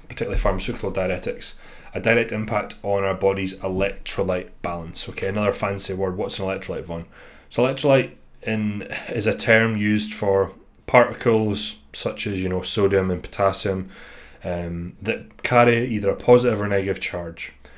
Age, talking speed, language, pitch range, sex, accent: 20-39, 150 wpm, English, 90-105 Hz, male, British